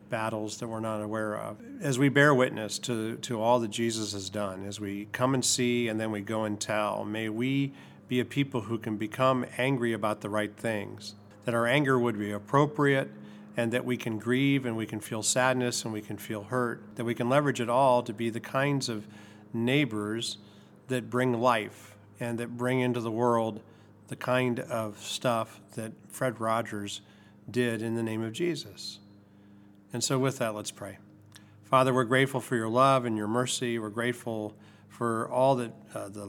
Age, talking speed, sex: 50-69, 195 wpm, male